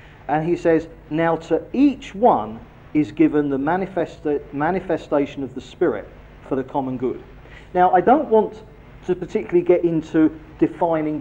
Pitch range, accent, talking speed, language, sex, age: 135-180 Hz, British, 145 wpm, English, male, 40-59